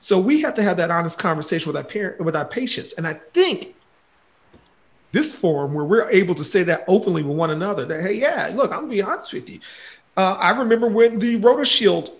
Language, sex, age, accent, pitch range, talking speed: English, male, 40-59, American, 170-240 Hz, 210 wpm